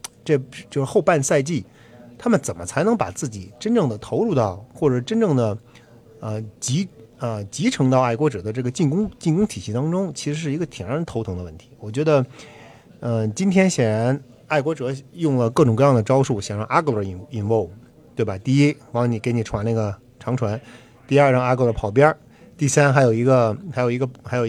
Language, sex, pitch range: Chinese, male, 115-150 Hz